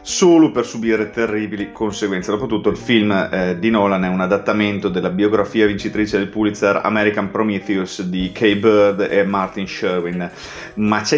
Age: 30-49